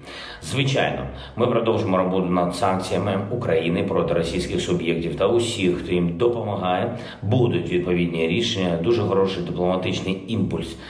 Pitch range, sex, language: 85-110 Hz, male, Ukrainian